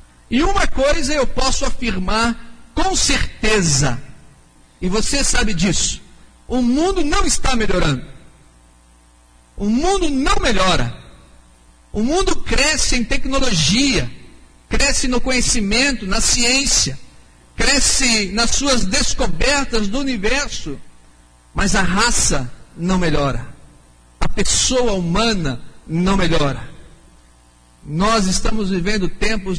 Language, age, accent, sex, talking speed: Portuguese, 50-69, Brazilian, male, 105 wpm